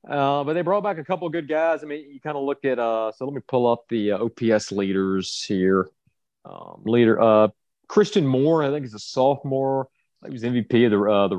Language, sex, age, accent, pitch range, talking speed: English, male, 30-49, American, 110-140 Hz, 240 wpm